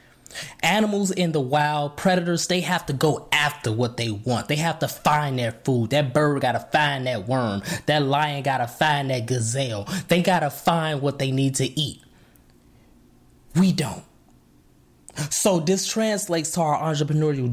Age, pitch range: 20-39, 145-195 Hz